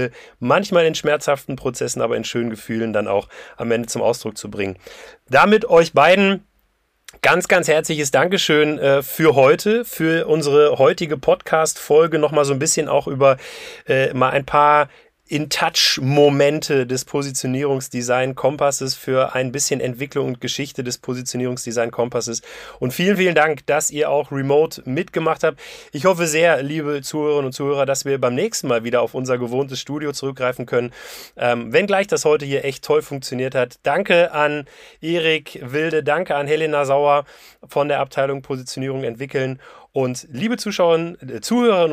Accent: German